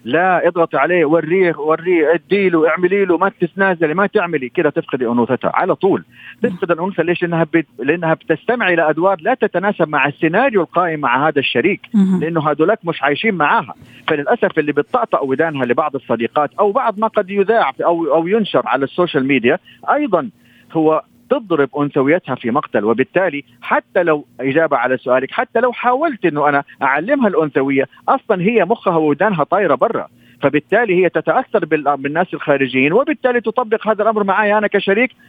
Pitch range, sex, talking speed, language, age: 145-205 Hz, male, 155 wpm, Arabic, 40-59